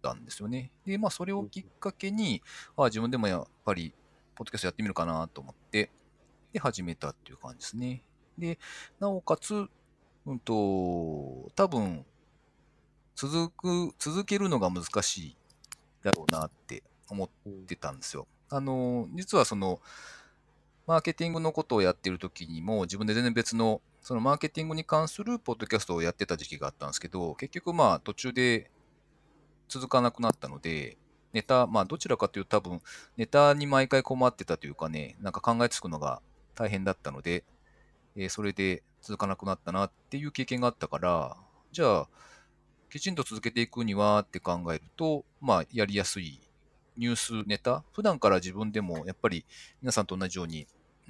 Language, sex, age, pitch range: Japanese, male, 40-59, 95-145 Hz